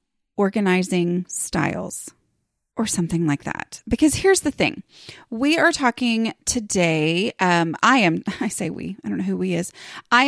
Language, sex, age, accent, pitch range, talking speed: English, female, 30-49, American, 170-240 Hz, 160 wpm